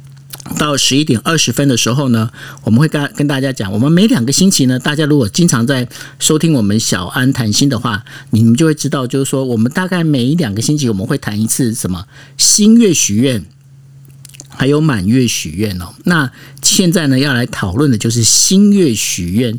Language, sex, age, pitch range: Chinese, male, 50-69, 115-150 Hz